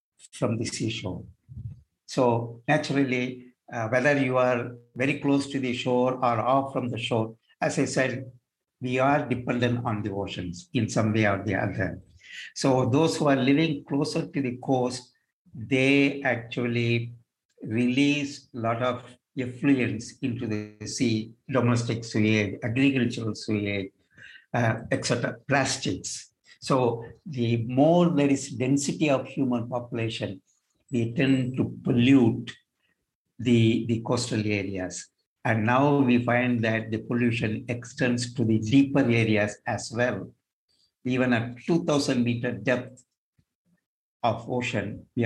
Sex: male